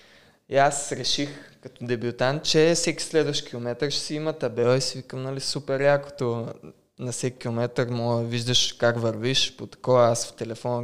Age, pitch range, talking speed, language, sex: 20-39, 120-145 Hz, 170 wpm, Bulgarian, male